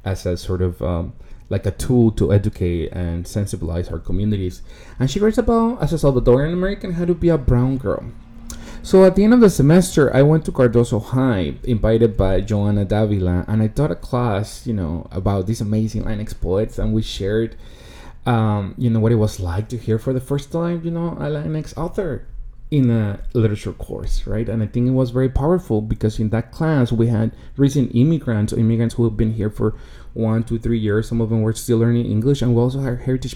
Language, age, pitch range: English, 20-39, 105-130 Hz